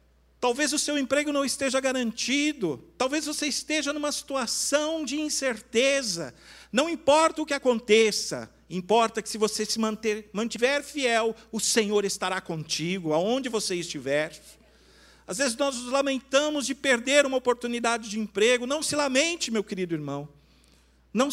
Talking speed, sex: 145 wpm, male